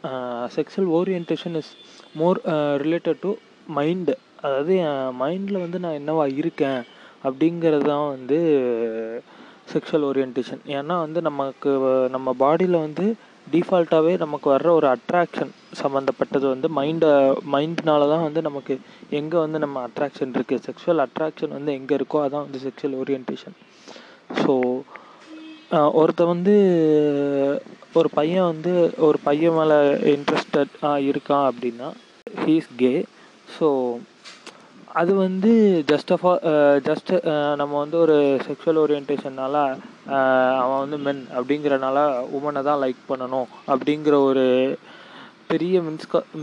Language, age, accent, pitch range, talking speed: Tamil, 20-39, native, 135-165 Hz, 115 wpm